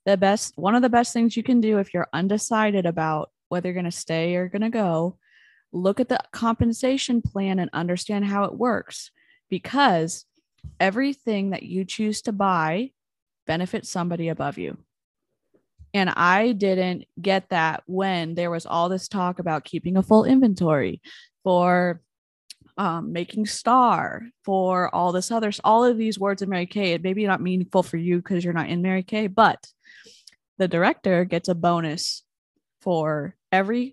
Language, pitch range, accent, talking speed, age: English, 170-210 Hz, American, 170 wpm, 20-39